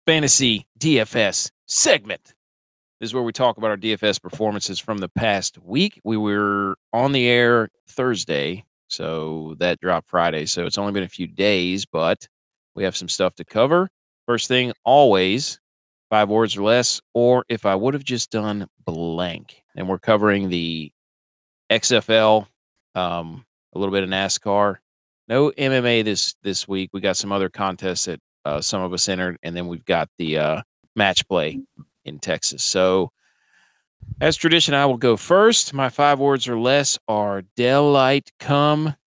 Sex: male